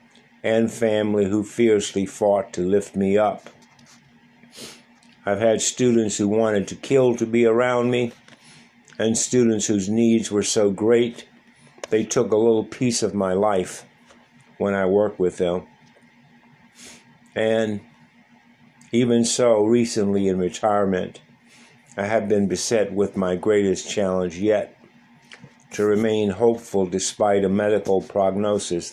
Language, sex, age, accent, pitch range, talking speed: English, male, 50-69, American, 95-115 Hz, 130 wpm